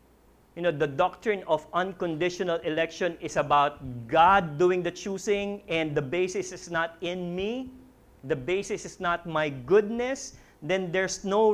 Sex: male